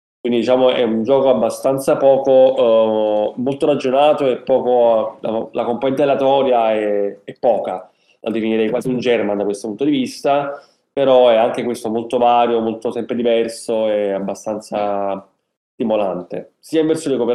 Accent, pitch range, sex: native, 110-135 Hz, male